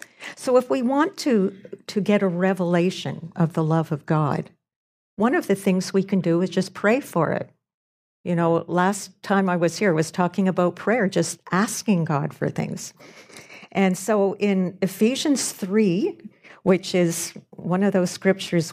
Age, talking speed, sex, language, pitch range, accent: 60-79, 175 wpm, female, English, 165-195 Hz, American